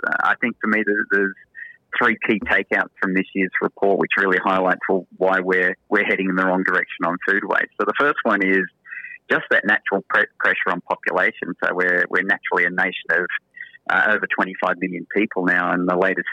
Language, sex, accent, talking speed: English, male, Australian, 200 wpm